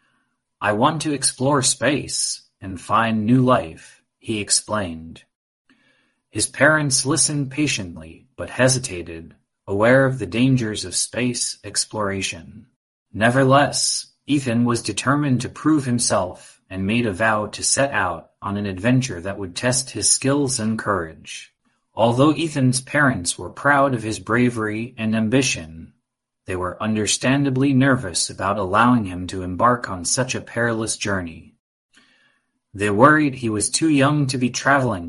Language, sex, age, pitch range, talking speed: English, male, 30-49, 100-130 Hz, 140 wpm